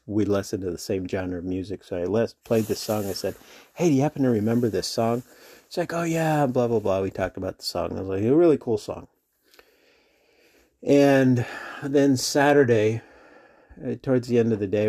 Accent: American